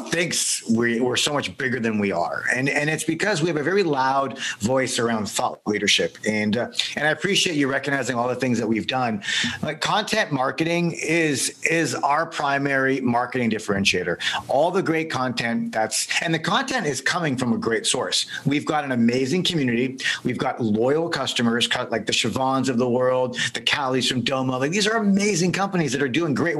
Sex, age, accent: male, 50-69, American